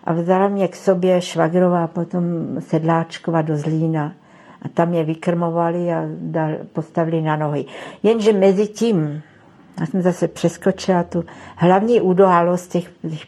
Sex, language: female, Czech